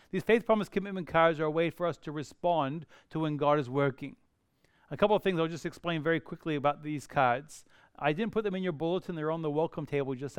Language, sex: English, male